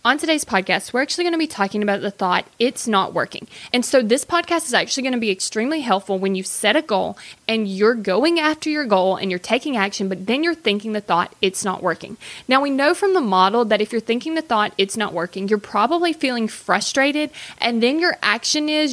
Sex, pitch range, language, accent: female, 200-280 Hz, English, American